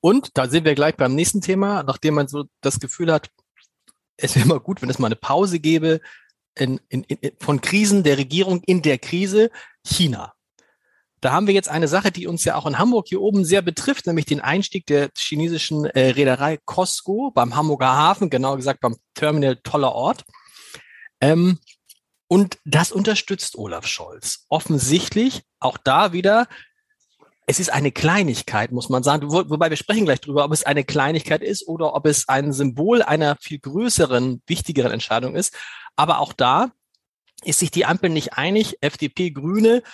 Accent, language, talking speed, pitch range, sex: German, German, 175 wpm, 140-195 Hz, male